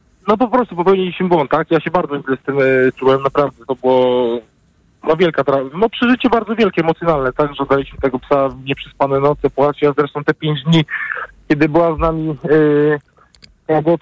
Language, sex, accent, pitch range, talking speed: Polish, male, native, 115-150 Hz, 195 wpm